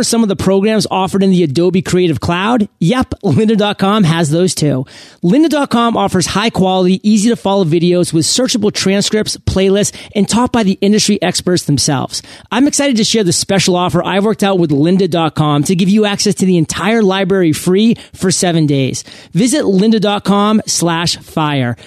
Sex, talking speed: male, 170 wpm